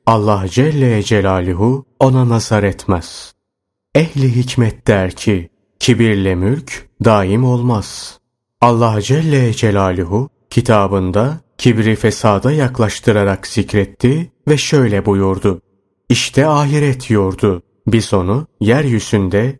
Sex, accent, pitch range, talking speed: male, native, 100-130 Hz, 95 wpm